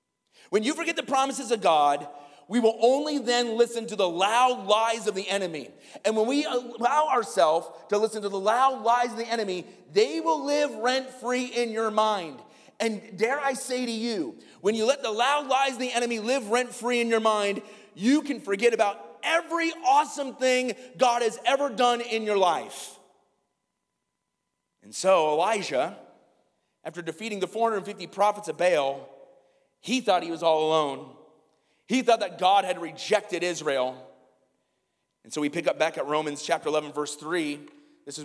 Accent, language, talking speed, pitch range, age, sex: American, English, 175 wpm, 160-250 Hz, 30-49, male